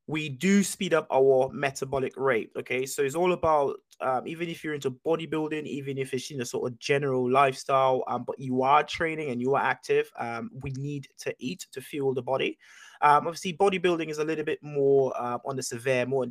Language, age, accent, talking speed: English, 20-39, British, 215 wpm